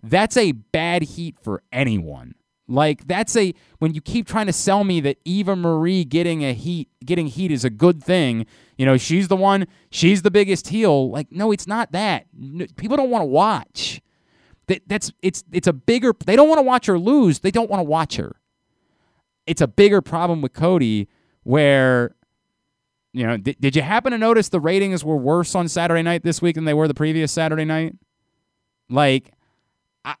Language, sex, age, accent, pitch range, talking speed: English, male, 30-49, American, 130-190 Hz, 195 wpm